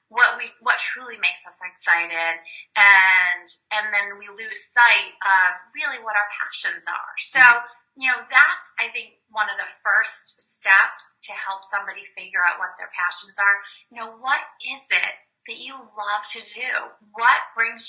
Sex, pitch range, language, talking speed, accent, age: female, 185-245 Hz, English, 170 wpm, American, 20-39